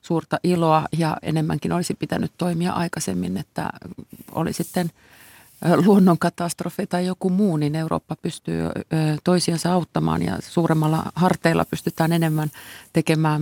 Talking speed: 115 wpm